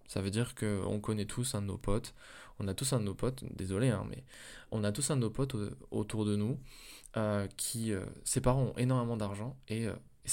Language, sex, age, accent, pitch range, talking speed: French, male, 20-39, French, 105-130 Hz, 240 wpm